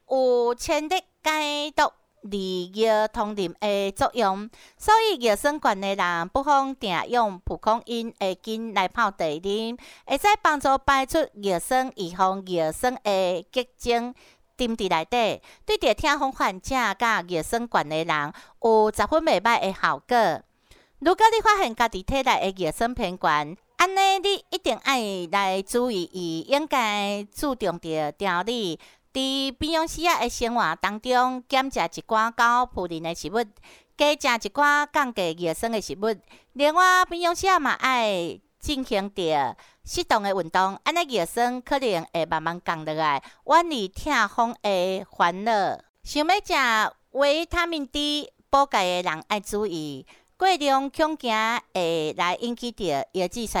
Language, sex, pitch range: Chinese, female, 190-280 Hz